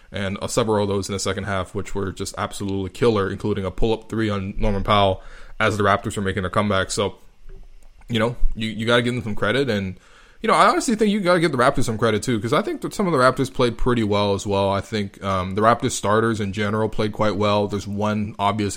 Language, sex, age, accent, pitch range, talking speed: English, male, 20-39, American, 100-120 Hz, 255 wpm